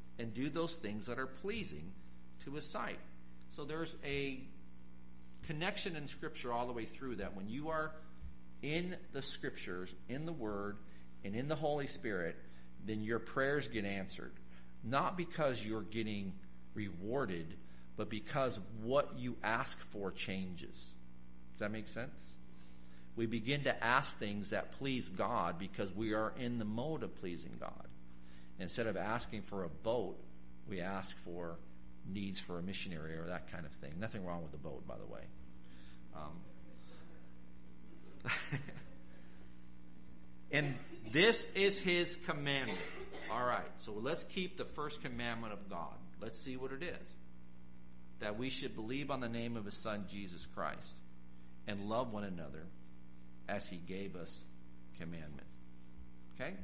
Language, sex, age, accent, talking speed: English, male, 50-69, American, 150 wpm